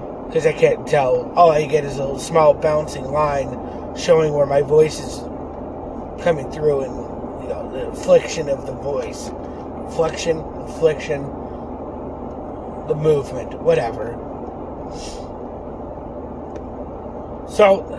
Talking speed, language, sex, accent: 110 wpm, English, male, American